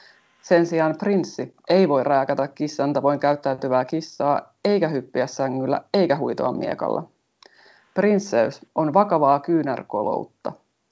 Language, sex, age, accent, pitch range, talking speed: Finnish, female, 30-49, native, 145-165 Hz, 110 wpm